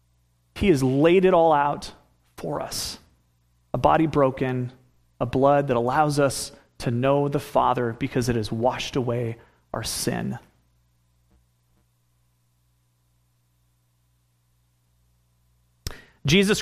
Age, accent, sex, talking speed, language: 30-49, American, male, 100 wpm, English